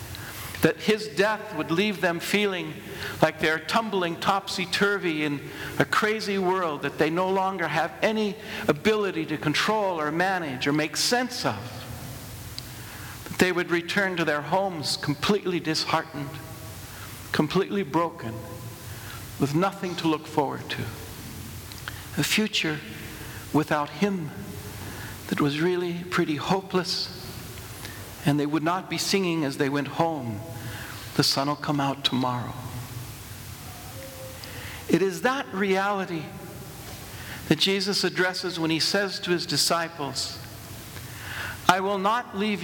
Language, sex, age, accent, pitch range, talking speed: English, male, 60-79, American, 120-195 Hz, 125 wpm